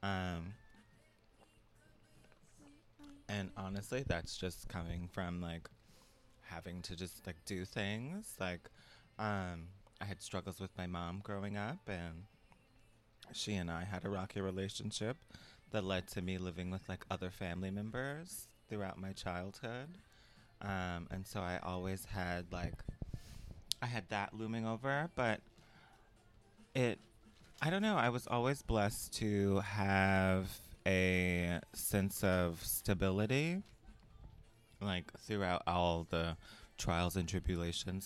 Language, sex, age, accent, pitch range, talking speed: English, male, 20-39, American, 90-110 Hz, 125 wpm